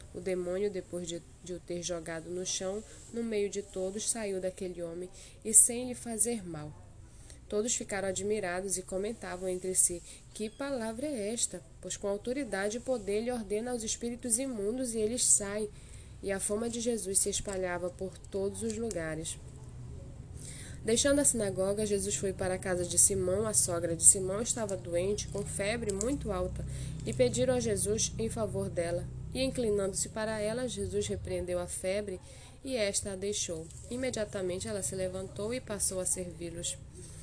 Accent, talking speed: Brazilian, 165 wpm